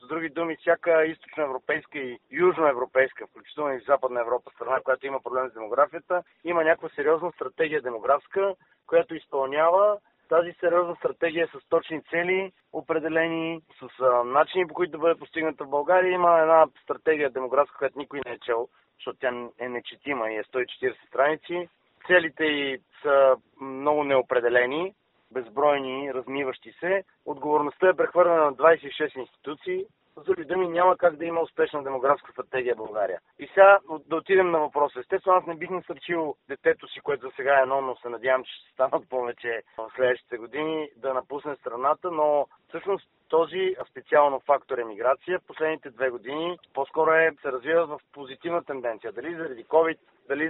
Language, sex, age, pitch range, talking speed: Bulgarian, male, 40-59, 135-170 Hz, 160 wpm